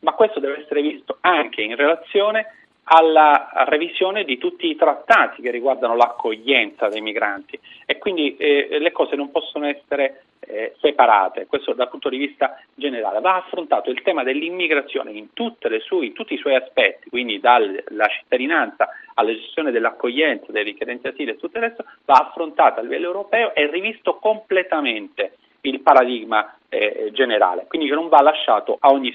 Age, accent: 40-59, native